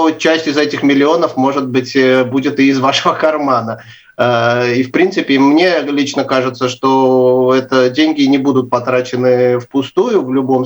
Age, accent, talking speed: 30-49, native, 145 wpm